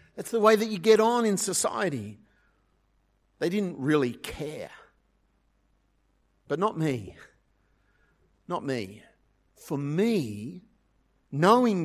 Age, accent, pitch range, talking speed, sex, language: 50-69, Australian, 145-215 Hz, 105 wpm, male, English